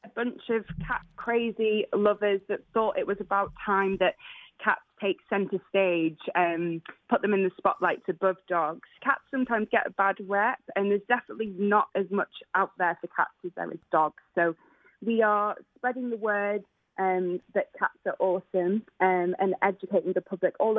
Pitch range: 180-220 Hz